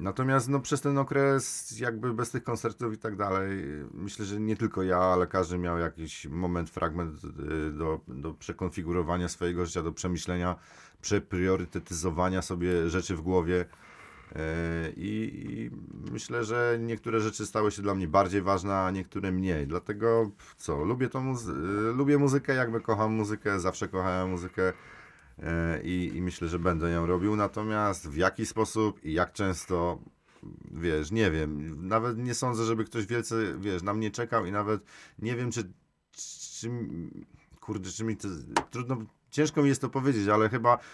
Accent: native